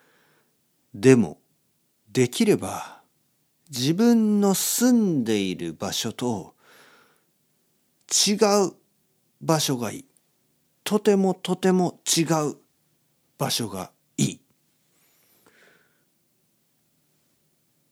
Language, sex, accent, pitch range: Japanese, male, native, 115-175 Hz